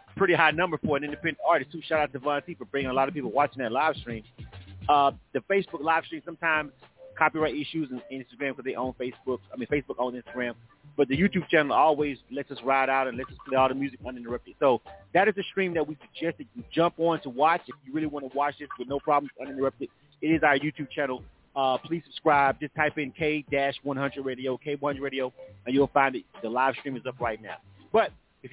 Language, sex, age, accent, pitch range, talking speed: English, male, 30-49, American, 130-160 Hz, 240 wpm